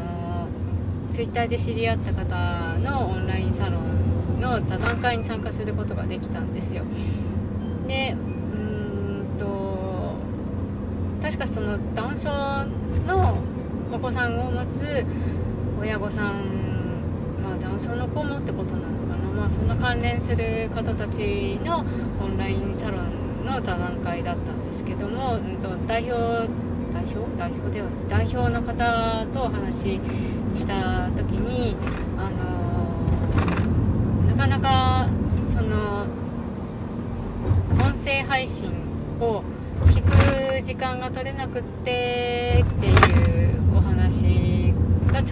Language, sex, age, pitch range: Japanese, female, 20-39, 95-105 Hz